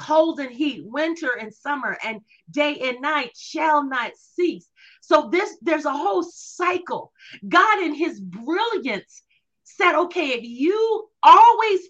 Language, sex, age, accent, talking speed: English, female, 40-59, American, 140 wpm